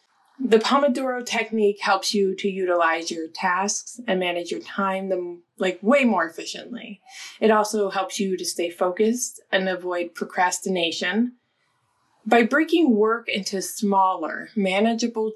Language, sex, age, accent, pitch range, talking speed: English, female, 20-39, American, 180-235 Hz, 130 wpm